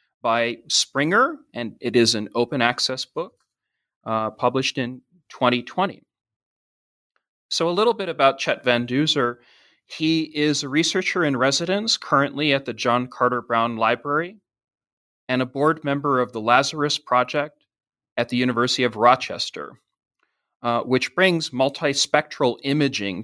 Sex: male